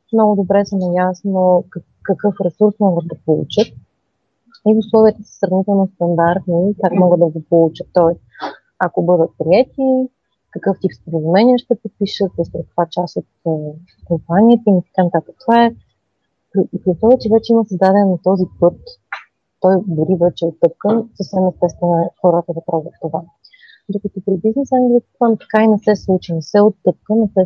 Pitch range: 170-205 Hz